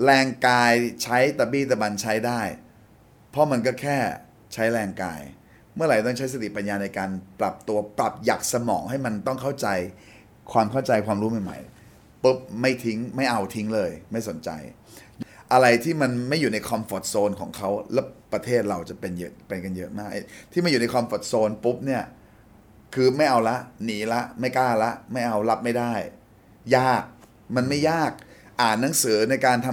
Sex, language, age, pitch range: male, Thai, 20-39, 105-130 Hz